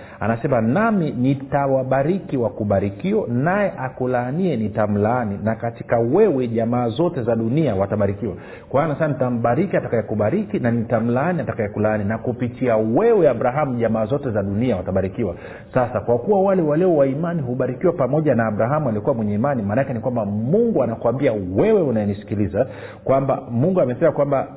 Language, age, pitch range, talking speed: Swahili, 50-69, 105-140 Hz, 135 wpm